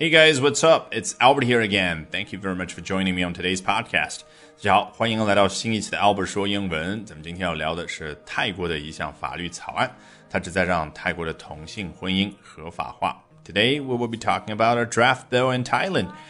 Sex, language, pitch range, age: male, Chinese, 95-130 Hz, 30-49